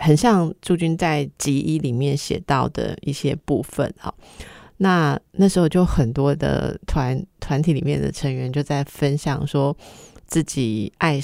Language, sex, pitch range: Chinese, female, 135-165 Hz